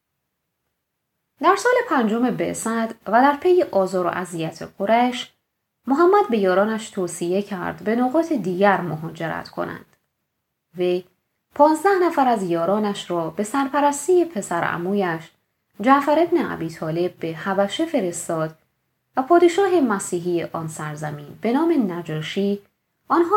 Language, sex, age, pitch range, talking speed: Persian, female, 20-39, 170-270 Hz, 115 wpm